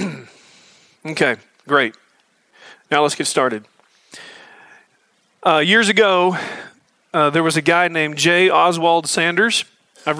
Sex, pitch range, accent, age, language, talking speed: male, 155-190 Hz, American, 40-59, English, 110 wpm